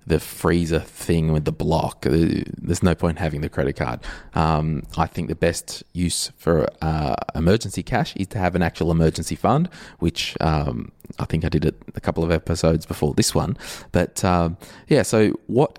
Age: 20-39